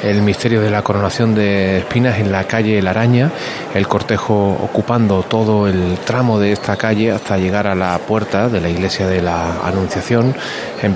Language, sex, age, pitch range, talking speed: Spanish, male, 30-49, 90-110 Hz, 180 wpm